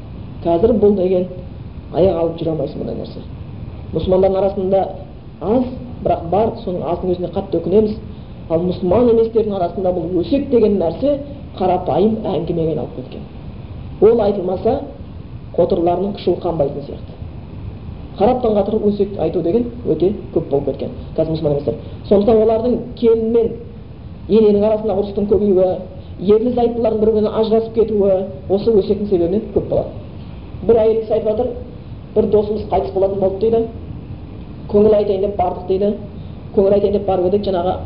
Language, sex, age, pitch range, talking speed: Bulgarian, female, 40-59, 170-215 Hz, 95 wpm